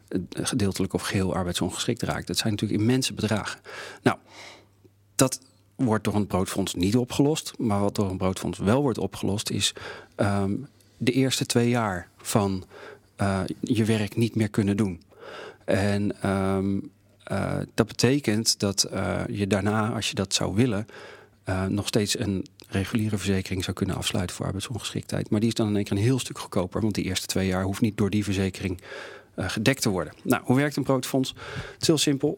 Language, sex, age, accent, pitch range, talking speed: Dutch, male, 40-59, Dutch, 100-120 Hz, 180 wpm